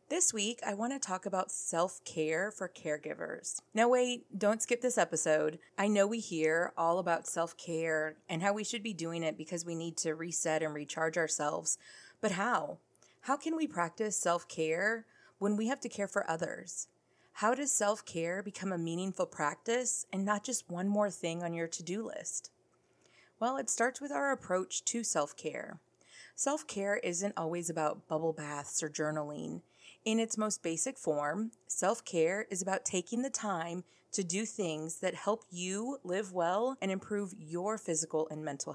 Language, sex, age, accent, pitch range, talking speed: English, female, 30-49, American, 165-220 Hz, 170 wpm